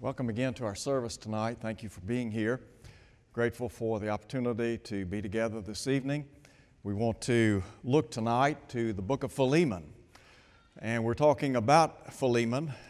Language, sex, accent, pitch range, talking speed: English, male, American, 115-140 Hz, 165 wpm